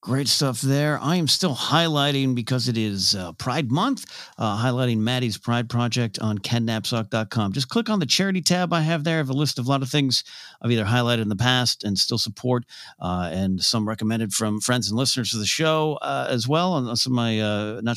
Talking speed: 225 wpm